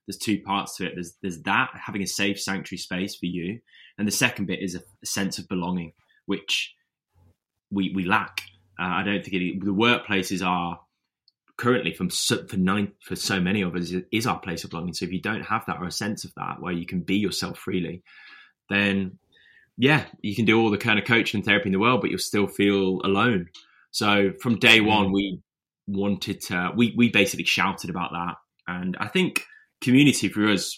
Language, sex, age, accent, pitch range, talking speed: English, male, 10-29, British, 90-105 Hz, 210 wpm